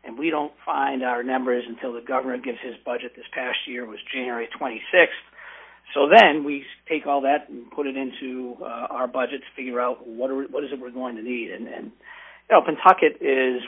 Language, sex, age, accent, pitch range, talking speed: English, male, 50-69, American, 125-155 Hz, 210 wpm